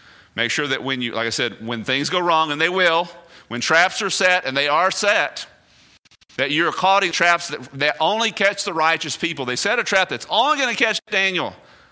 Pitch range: 115-180 Hz